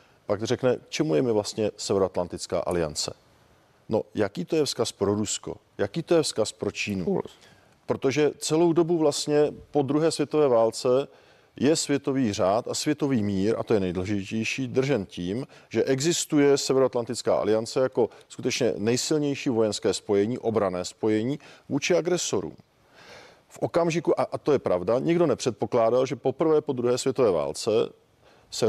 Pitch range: 115-145 Hz